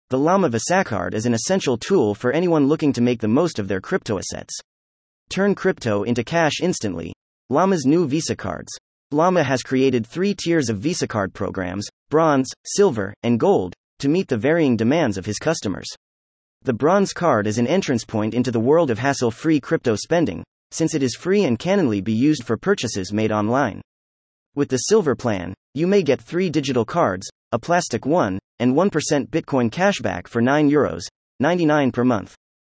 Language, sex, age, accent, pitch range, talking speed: English, male, 30-49, American, 110-160 Hz, 180 wpm